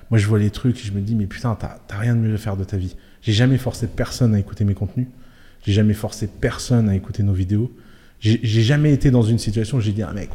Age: 20-39